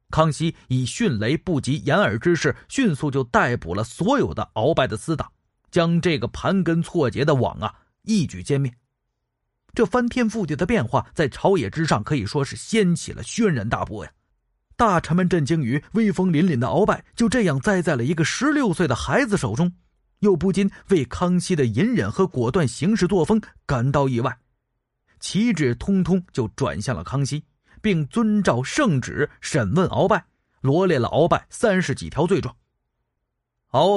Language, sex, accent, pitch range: Chinese, male, native, 120-180 Hz